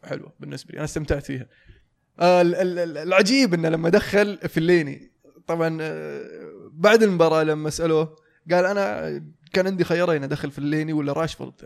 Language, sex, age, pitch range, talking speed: Arabic, male, 20-39, 145-175 Hz, 145 wpm